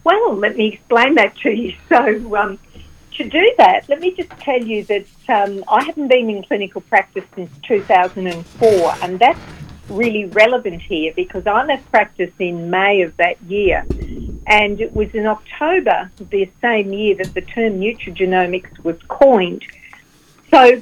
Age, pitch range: 50-69, 185-240 Hz